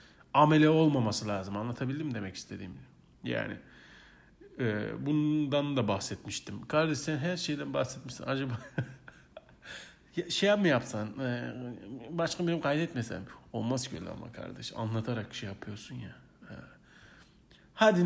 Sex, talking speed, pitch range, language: male, 105 wpm, 105-140 Hz, Turkish